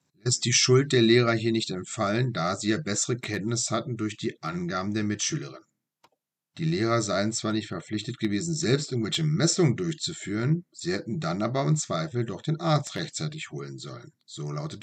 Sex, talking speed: male, 180 wpm